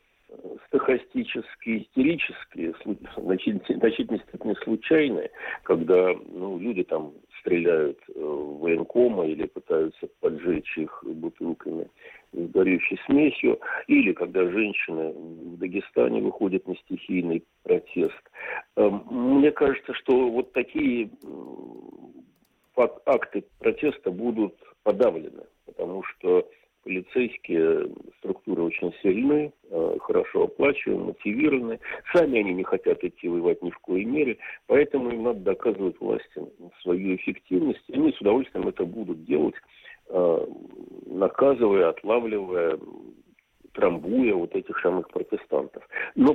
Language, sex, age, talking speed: Russian, male, 50-69, 105 wpm